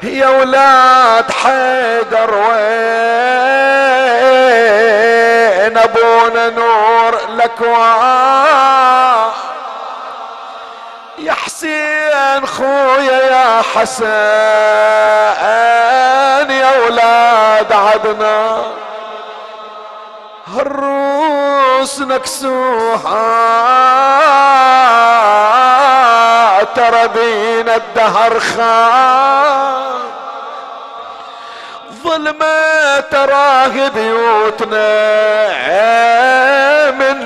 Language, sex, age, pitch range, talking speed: Arabic, male, 40-59, 225-265 Hz, 40 wpm